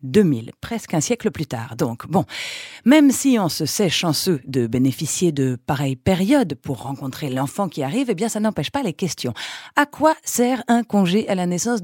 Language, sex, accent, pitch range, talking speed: French, female, French, 155-255 Hz, 200 wpm